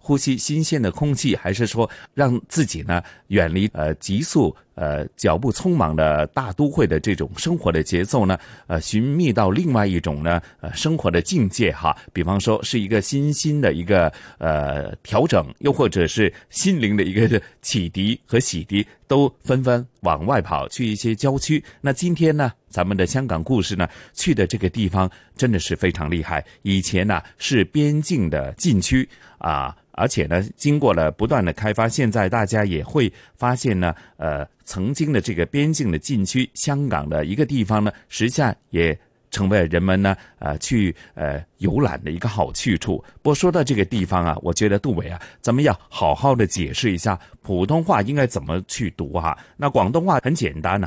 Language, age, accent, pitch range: Chinese, 30-49, native, 90-135 Hz